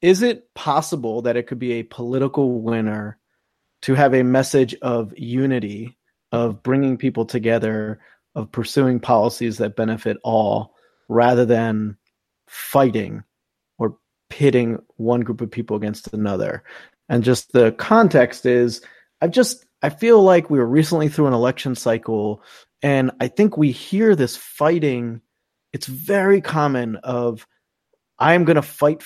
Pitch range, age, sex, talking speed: 120-150 Hz, 30-49, male, 145 wpm